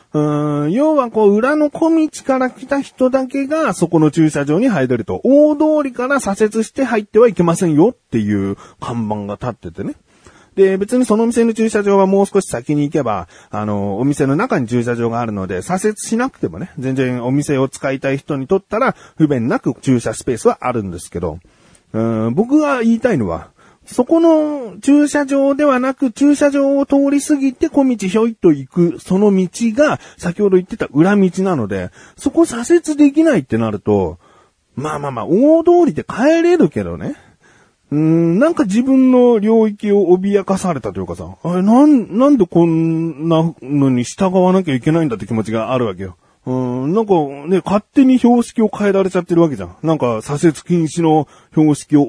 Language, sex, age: Japanese, male, 40-59